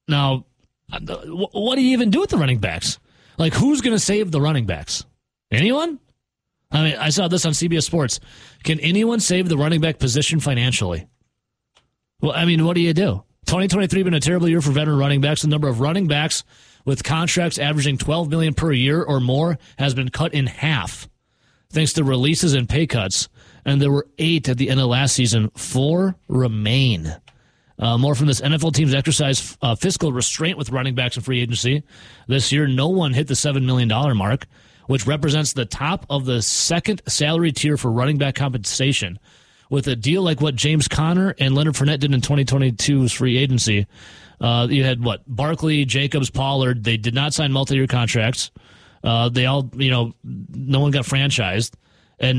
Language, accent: English, American